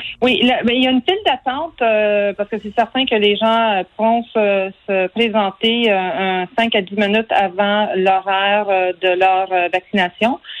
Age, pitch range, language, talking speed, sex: 40-59, 200-240 Hz, French, 190 wpm, female